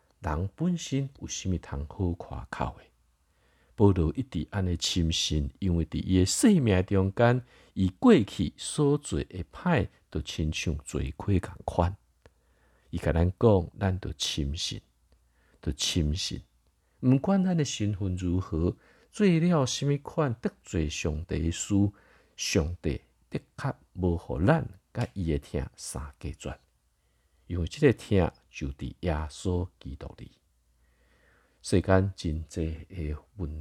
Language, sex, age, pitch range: Chinese, male, 50-69, 75-100 Hz